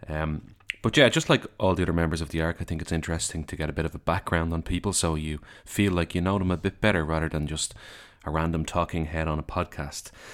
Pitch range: 80-100 Hz